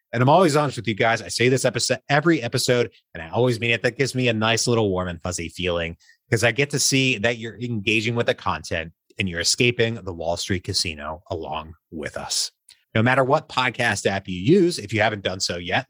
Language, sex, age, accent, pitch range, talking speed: English, male, 30-49, American, 95-125 Hz, 235 wpm